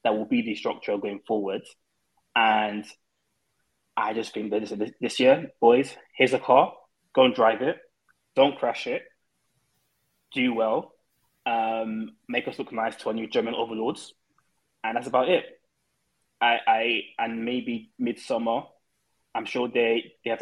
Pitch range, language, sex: 105-125 Hz, English, male